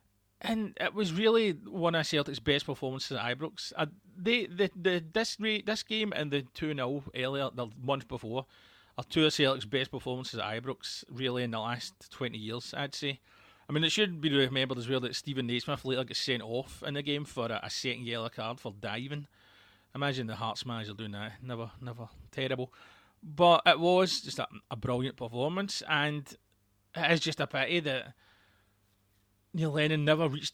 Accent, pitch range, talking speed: British, 115-150 Hz, 185 wpm